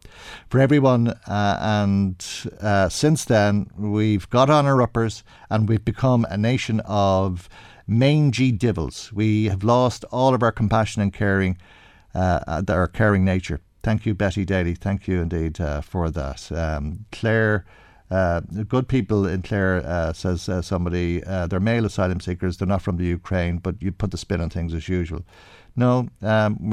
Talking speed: 170 wpm